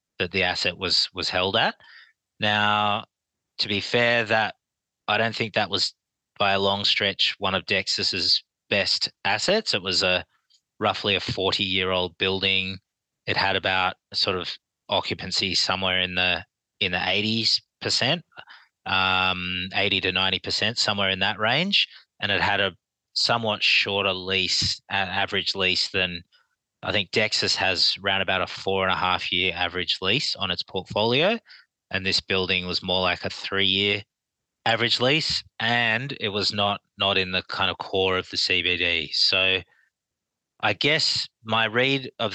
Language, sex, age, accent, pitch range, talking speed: English, male, 20-39, Australian, 95-105 Hz, 160 wpm